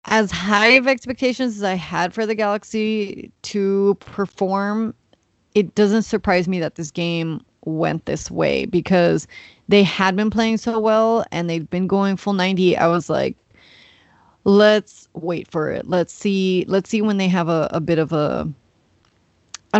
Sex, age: female, 20-39